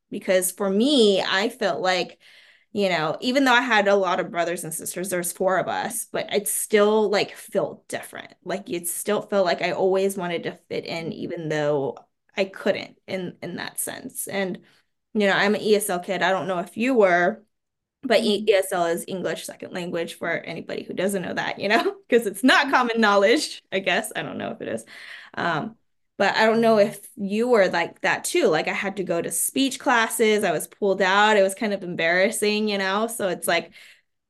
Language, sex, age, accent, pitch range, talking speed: English, female, 20-39, American, 185-220 Hz, 210 wpm